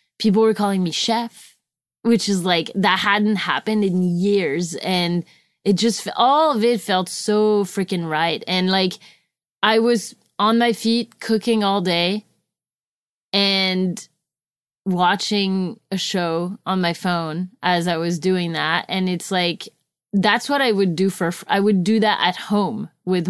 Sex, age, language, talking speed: female, 20-39, English, 155 wpm